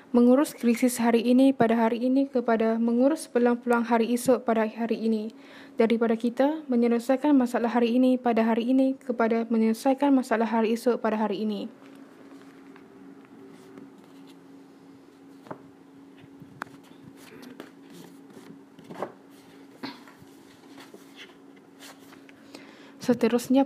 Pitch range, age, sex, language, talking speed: 225-265 Hz, 10-29, female, Malay, 85 wpm